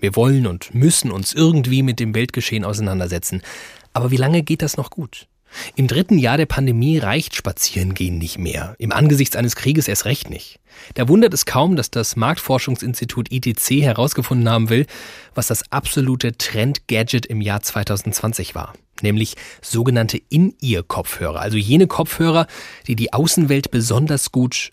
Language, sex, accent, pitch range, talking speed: German, male, German, 110-145 Hz, 155 wpm